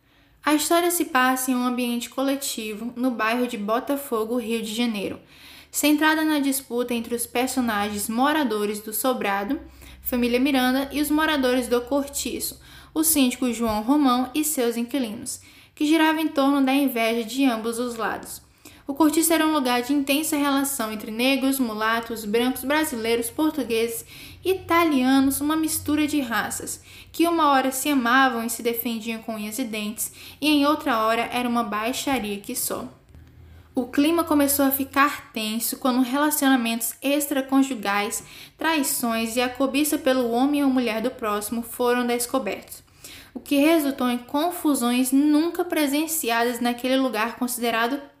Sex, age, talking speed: female, 10-29, 150 wpm